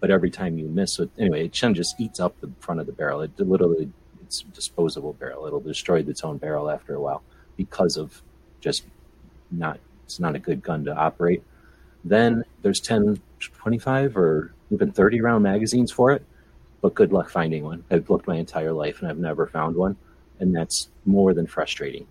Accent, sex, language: American, male, English